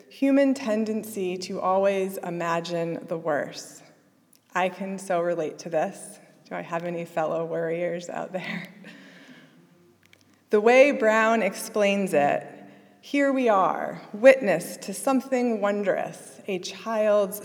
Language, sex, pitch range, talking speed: English, female, 175-220 Hz, 120 wpm